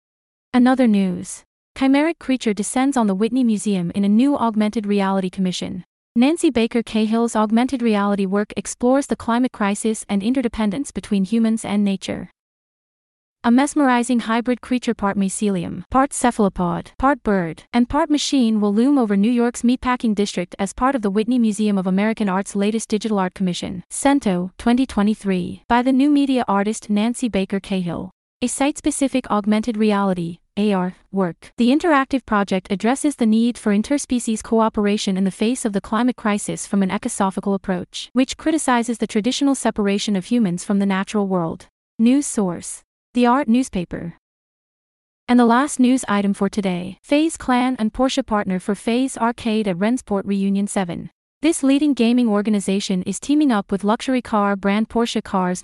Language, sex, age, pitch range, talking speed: English, female, 30-49, 200-250 Hz, 160 wpm